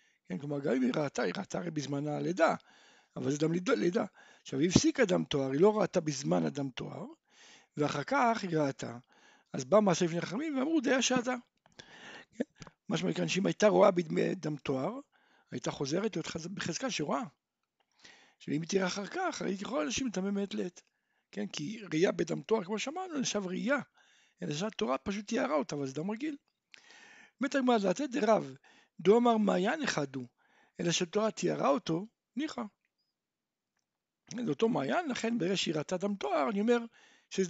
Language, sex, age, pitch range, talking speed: Hebrew, male, 60-79, 165-245 Hz, 150 wpm